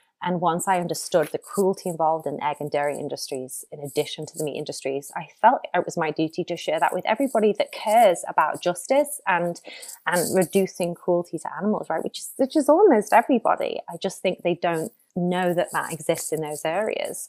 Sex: female